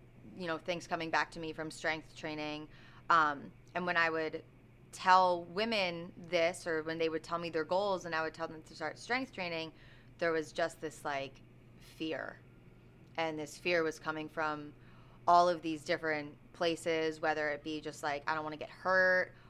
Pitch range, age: 150-170 Hz, 20-39